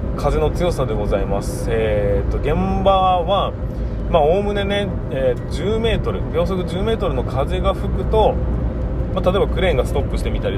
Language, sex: Japanese, male